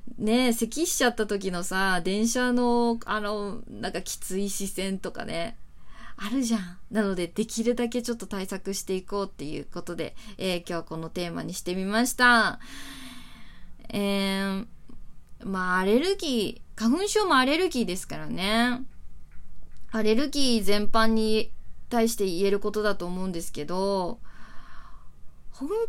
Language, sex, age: Japanese, female, 20-39